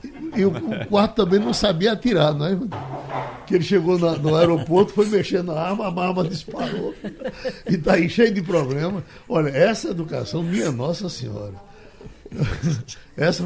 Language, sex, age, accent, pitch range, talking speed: Portuguese, male, 60-79, Brazilian, 130-185 Hz, 160 wpm